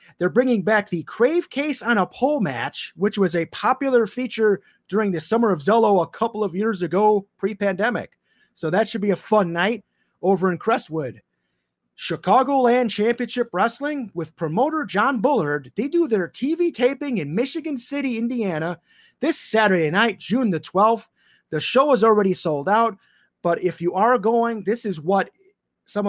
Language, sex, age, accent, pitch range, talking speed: English, male, 30-49, American, 170-240 Hz, 170 wpm